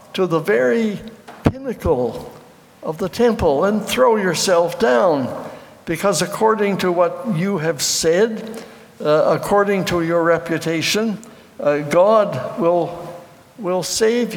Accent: American